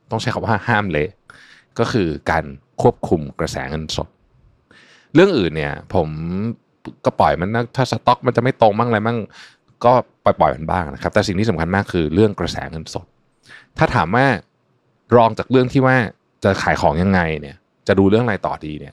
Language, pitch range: Thai, 85-115 Hz